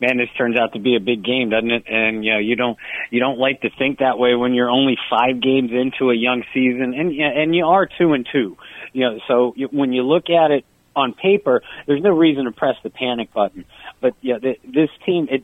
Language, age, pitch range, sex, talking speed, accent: English, 40-59, 115-140 Hz, male, 255 wpm, American